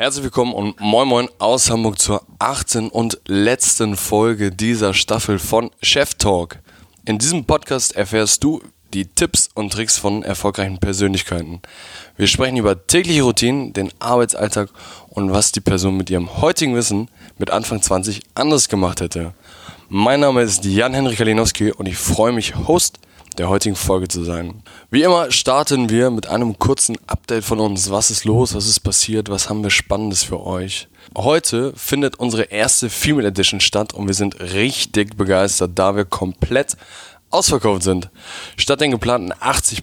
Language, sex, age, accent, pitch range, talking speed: German, male, 20-39, German, 95-115 Hz, 165 wpm